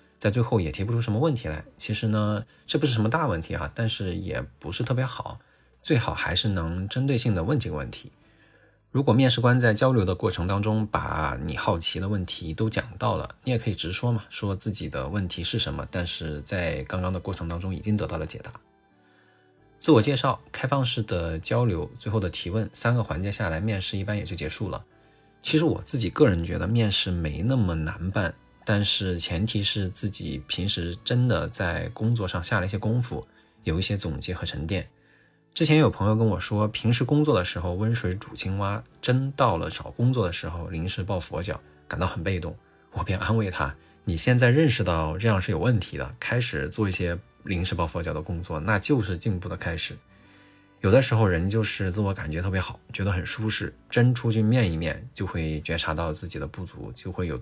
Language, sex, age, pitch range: Chinese, male, 20-39, 90-115 Hz